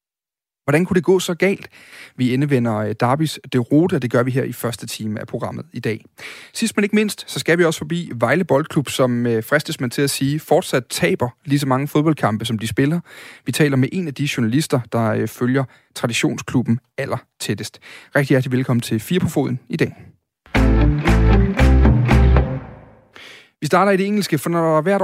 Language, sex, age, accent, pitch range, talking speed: Danish, male, 30-49, native, 120-155 Hz, 185 wpm